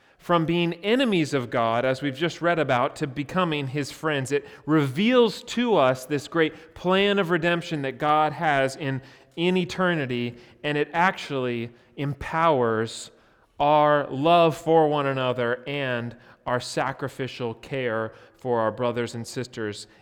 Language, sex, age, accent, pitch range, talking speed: English, male, 30-49, American, 120-155 Hz, 140 wpm